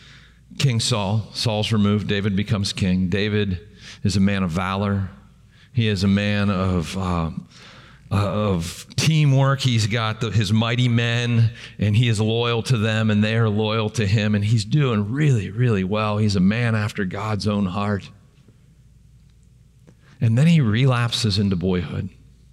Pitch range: 105-130 Hz